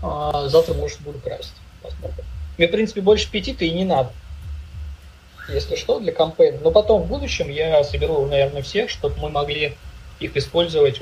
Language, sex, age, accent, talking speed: Russian, male, 20-39, native, 165 wpm